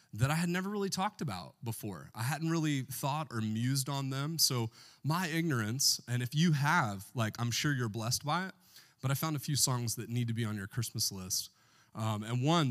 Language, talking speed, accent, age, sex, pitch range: English, 220 wpm, American, 30-49, male, 115-150 Hz